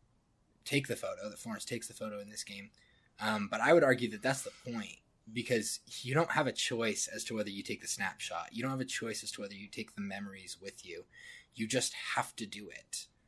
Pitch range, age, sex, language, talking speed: 105-130 Hz, 20-39, male, English, 240 wpm